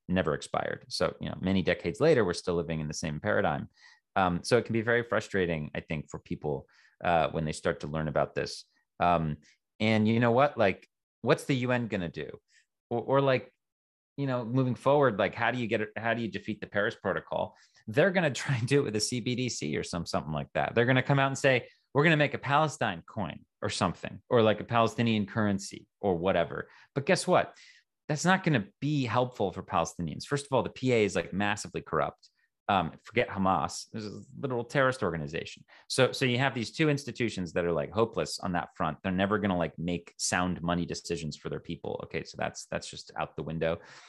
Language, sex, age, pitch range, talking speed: English, male, 30-49, 85-125 Hz, 225 wpm